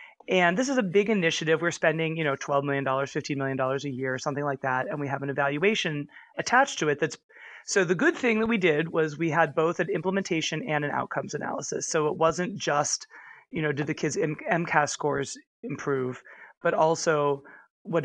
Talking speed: 205 wpm